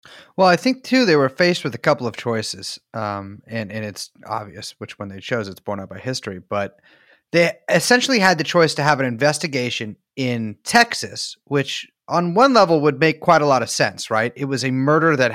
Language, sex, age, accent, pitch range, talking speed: English, male, 30-49, American, 110-150 Hz, 215 wpm